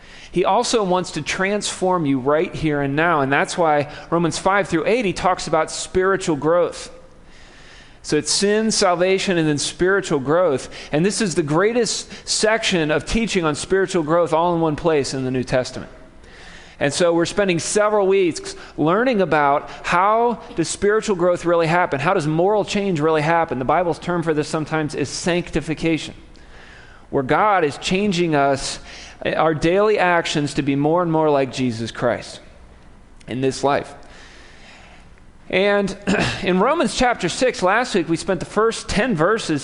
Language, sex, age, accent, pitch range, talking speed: English, male, 40-59, American, 150-195 Hz, 165 wpm